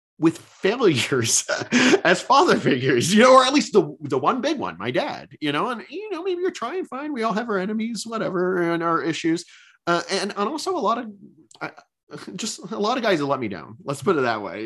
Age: 30-49